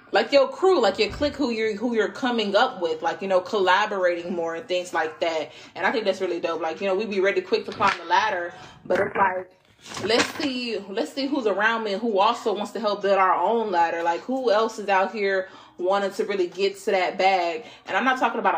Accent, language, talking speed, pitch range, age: American, English, 250 wpm, 180-215 Hz, 20-39